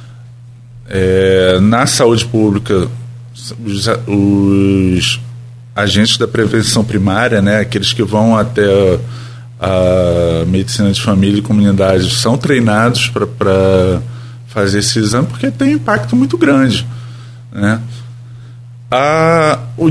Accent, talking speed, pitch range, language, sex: Brazilian, 100 wpm, 105-130 Hz, Portuguese, male